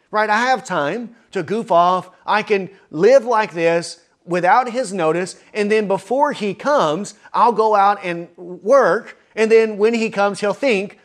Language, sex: English, male